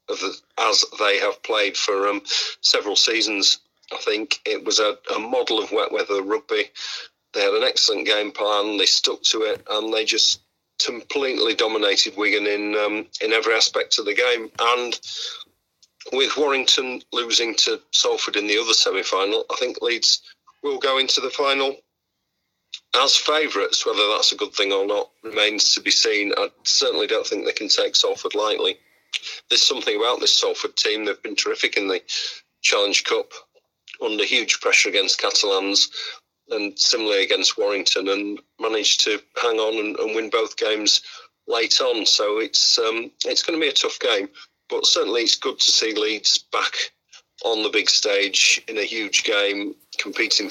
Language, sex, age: English, male, 40-59